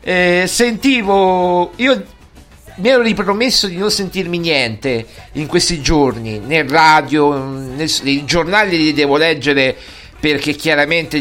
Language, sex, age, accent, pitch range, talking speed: Italian, male, 50-69, native, 145-200 Hz, 125 wpm